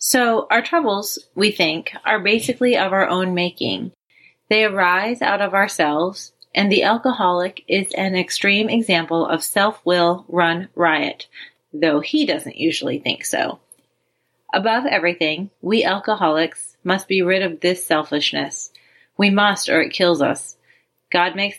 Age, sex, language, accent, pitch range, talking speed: 30-49, female, English, American, 170-220 Hz, 140 wpm